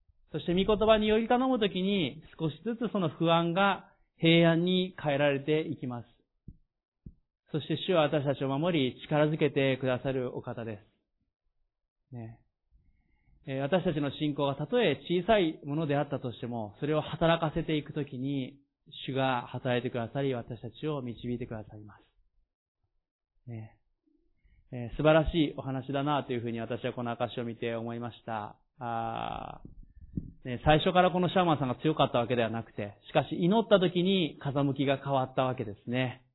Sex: male